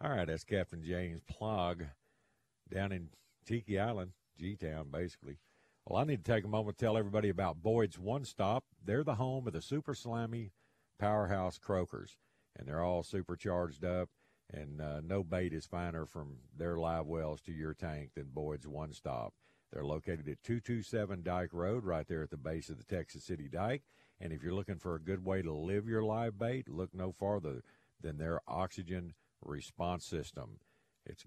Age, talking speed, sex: 50-69, 180 wpm, male